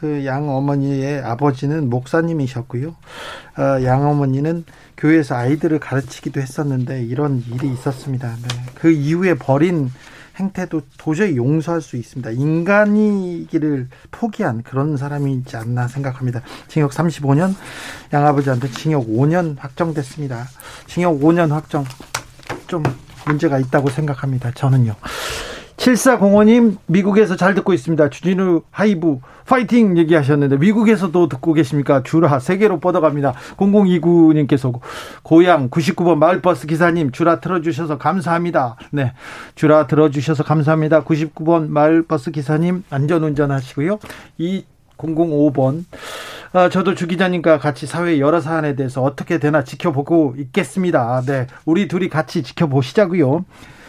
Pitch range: 140-170 Hz